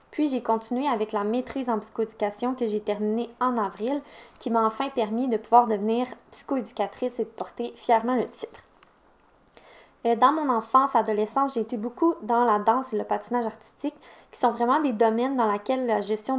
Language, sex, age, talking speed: French, female, 20-39, 185 wpm